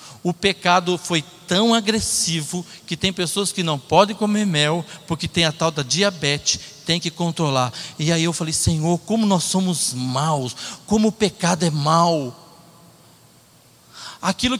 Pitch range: 185-275 Hz